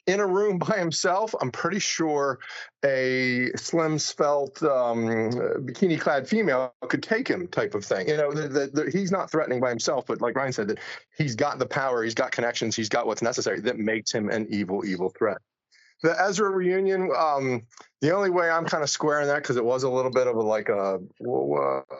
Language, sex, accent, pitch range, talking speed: English, male, American, 125-165 Hz, 215 wpm